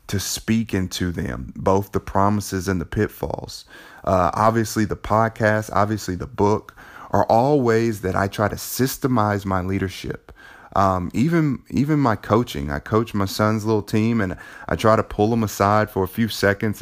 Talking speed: 175 wpm